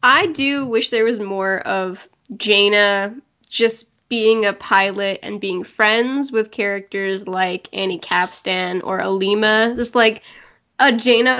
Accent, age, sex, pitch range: American, 10-29, female, 195-235 Hz